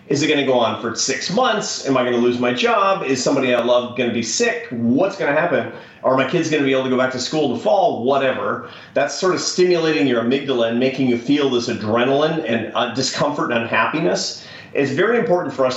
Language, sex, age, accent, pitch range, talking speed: English, male, 40-59, American, 120-145 Hz, 230 wpm